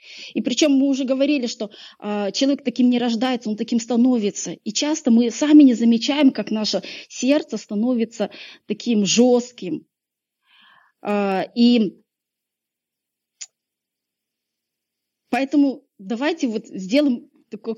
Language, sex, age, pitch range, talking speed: Russian, female, 20-39, 220-275 Hz, 110 wpm